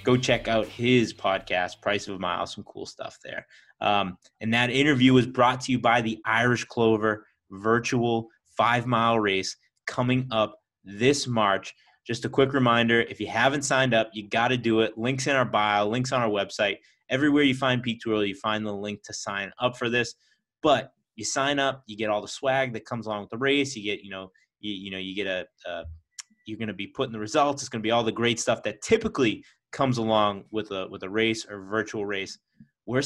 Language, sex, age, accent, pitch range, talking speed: English, male, 30-49, American, 105-130 Hz, 220 wpm